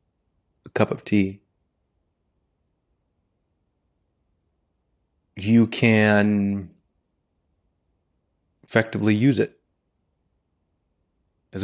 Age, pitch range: 30-49, 85-105 Hz